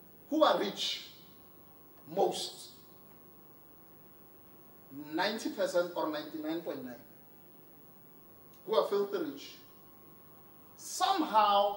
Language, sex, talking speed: English, male, 60 wpm